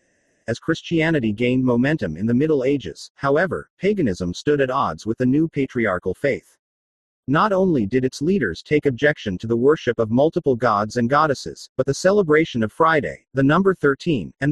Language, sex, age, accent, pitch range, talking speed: English, male, 40-59, American, 115-160 Hz, 175 wpm